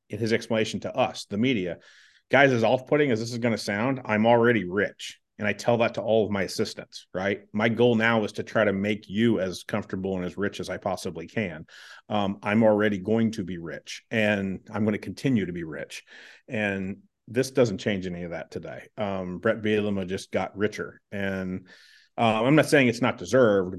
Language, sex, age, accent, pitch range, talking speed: English, male, 40-59, American, 95-120 Hz, 210 wpm